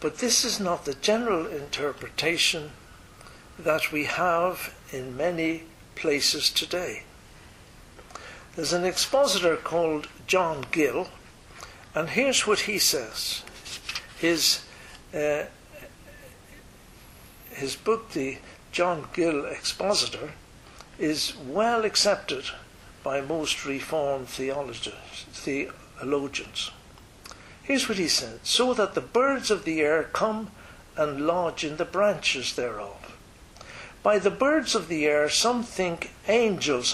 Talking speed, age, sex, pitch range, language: 110 wpm, 60-79, male, 150-200 Hz, English